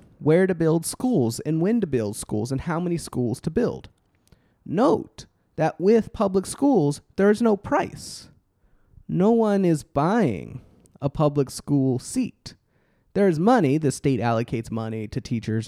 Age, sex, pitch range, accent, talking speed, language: 30-49, male, 135-200 Hz, American, 155 wpm, English